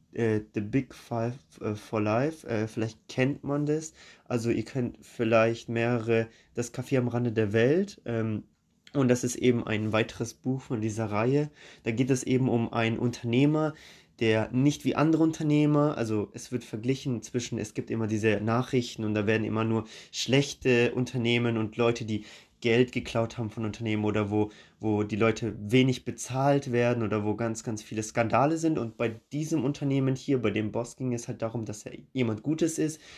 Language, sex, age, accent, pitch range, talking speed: German, male, 20-39, German, 115-135 Hz, 180 wpm